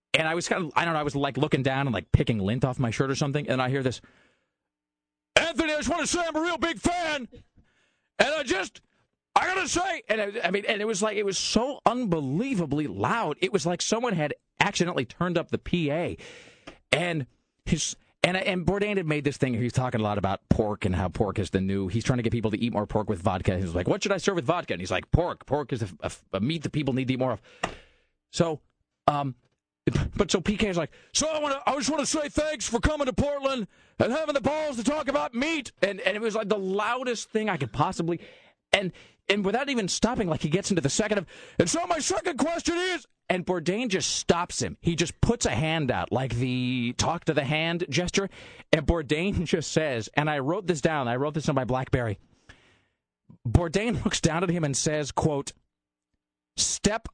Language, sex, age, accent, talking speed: English, male, 40-59, American, 230 wpm